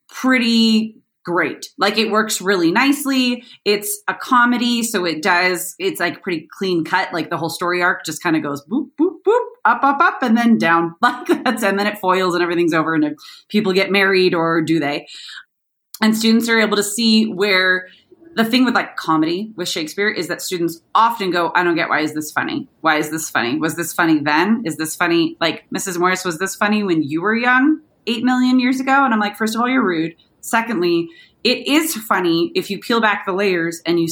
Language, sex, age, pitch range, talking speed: English, female, 30-49, 170-230 Hz, 215 wpm